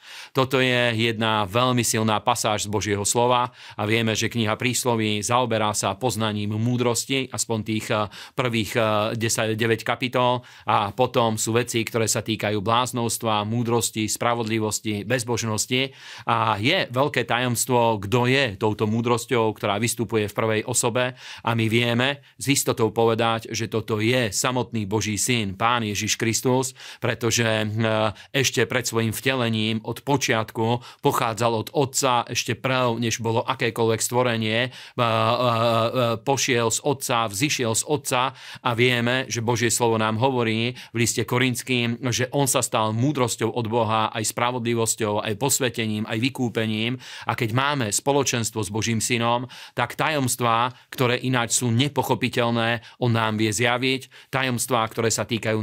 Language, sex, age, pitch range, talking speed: Slovak, male, 40-59, 110-125 Hz, 140 wpm